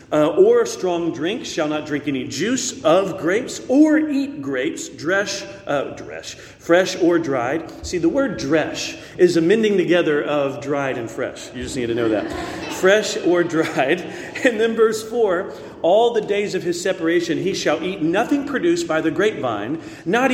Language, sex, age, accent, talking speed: English, male, 40-59, American, 175 wpm